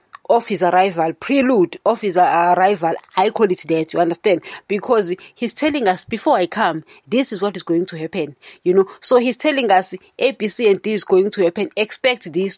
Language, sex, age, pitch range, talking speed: English, female, 30-49, 175-230 Hz, 200 wpm